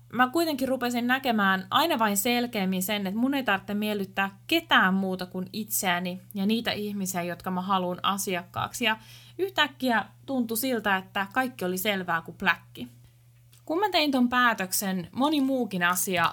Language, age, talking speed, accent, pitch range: Finnish, 20-39, 155 wpm, native, 185-245 Hz